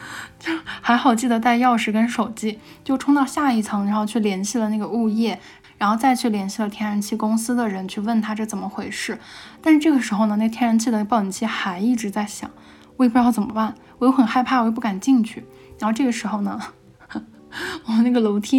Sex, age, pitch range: female, 10-29, 210-245 Hz